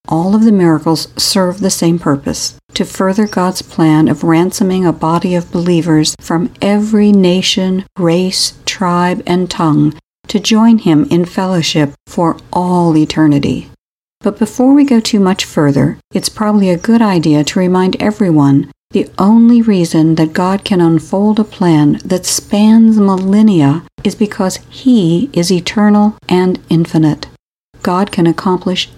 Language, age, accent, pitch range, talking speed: English, 60-79, American, 165-200 Hz, 145 wpm